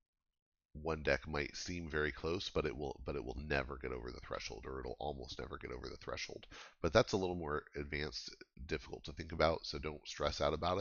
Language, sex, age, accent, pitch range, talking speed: English, male, 40-59, American, 70-85 Hz, 220 wpm